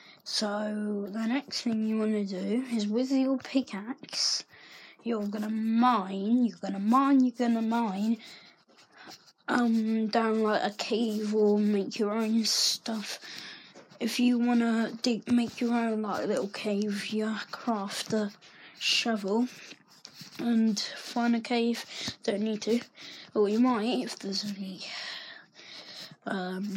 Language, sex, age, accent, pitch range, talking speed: English, female, 20-39, British, 210-245 Hz, 135 wpm